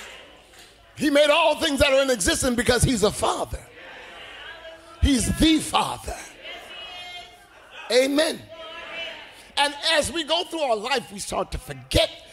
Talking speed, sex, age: 130 wpm, male, 50-69